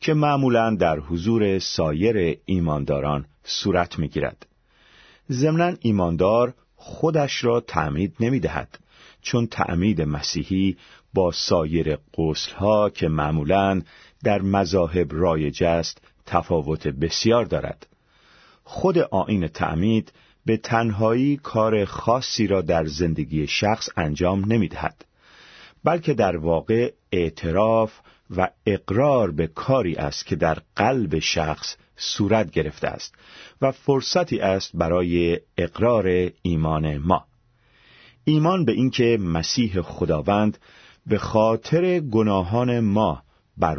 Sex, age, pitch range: male, 40-59, 80-115 Hz